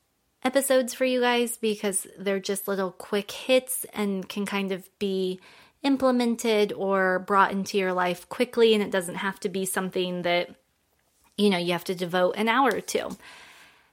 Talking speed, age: 170 wpm, 20-39